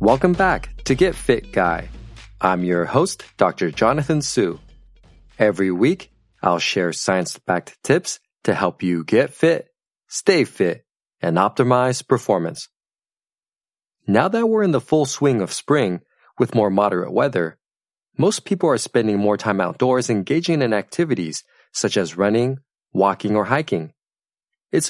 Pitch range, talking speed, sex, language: 100-130 Hz, 140 wpm, male, English